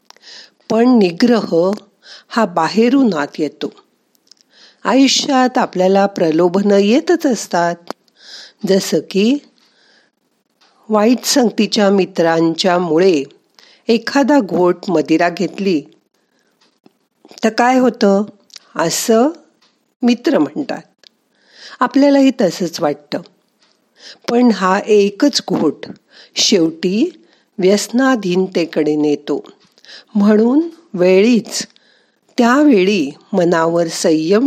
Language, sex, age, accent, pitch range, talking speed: Marathi, female, 50-69, native, 180-250 Hz, 70 wpm